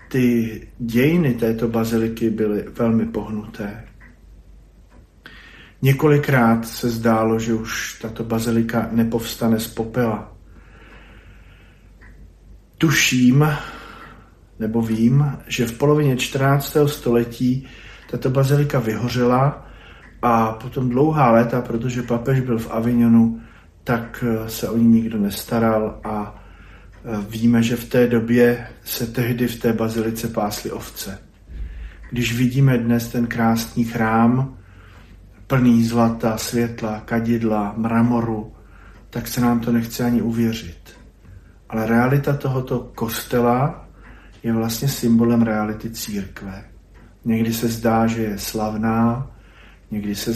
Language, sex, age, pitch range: Slovak, male, 40-59, 105-120 Hz